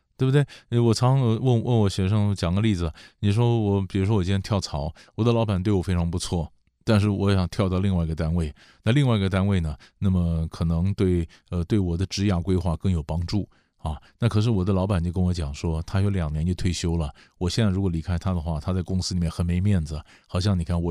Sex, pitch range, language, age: male, 90-120 Hz, Chinese, 20-39